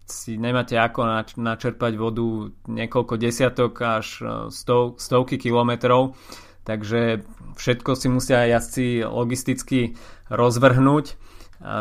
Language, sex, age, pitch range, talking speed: Slovak, male, 20-39, 110-125 Hz, 95 wpm